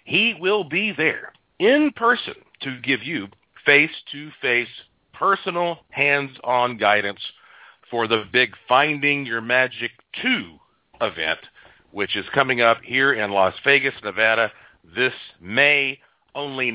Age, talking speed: 40-59, 120 wpm